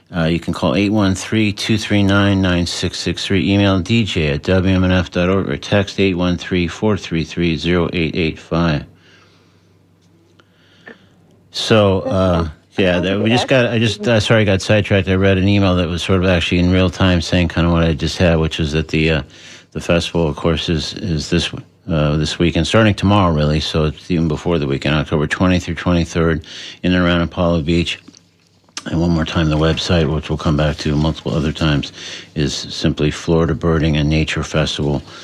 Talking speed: 165 wpm